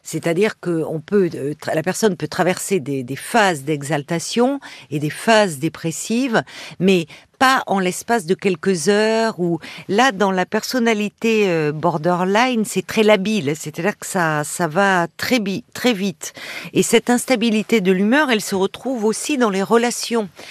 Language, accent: French, French